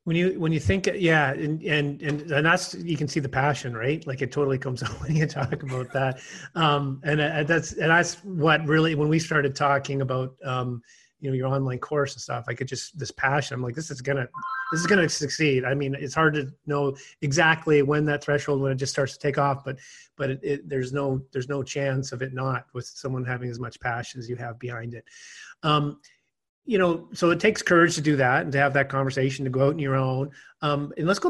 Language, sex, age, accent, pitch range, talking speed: English, male, 30-49, American, 135-155 Hz, 245 wpm